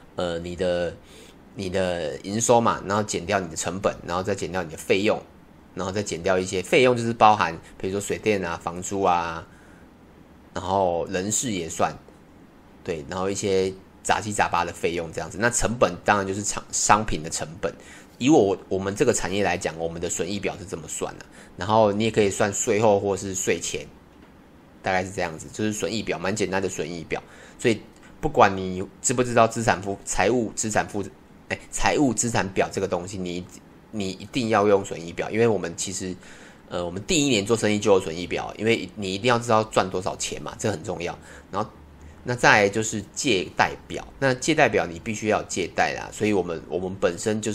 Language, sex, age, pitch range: Chinese, male, 20-39, 90-110 Hz